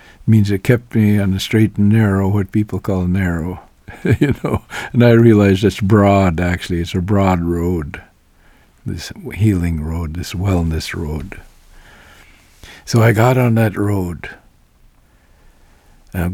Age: 60-79